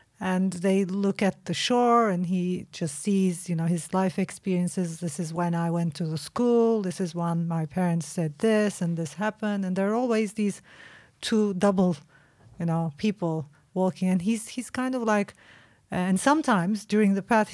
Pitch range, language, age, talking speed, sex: 170-205 Hz, English, 30-49, 190 wpm, female